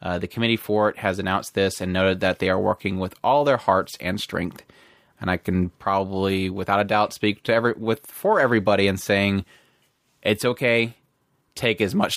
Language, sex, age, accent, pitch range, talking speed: English, male, 20-39, American, 95-120 Hz, 195 wpm